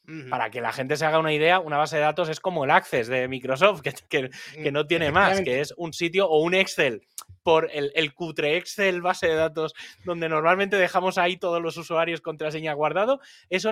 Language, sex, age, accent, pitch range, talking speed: Spanish, male, 30-49, Spanish, 150-205 Hz, 215 wpm